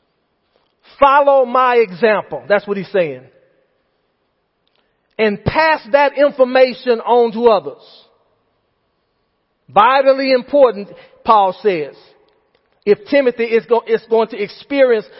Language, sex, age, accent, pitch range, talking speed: English, male, 40-59, American, 220-290 Hz, 95 wpm